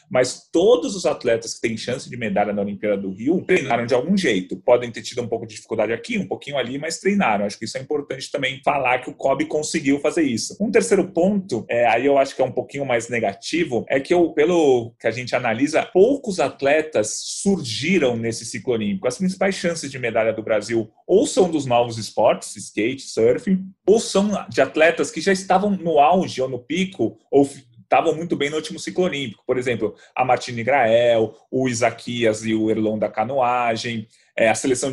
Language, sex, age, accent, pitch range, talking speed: Portuguese, male, 30-49, Brazilian, 115-160 Hz, 205 wpm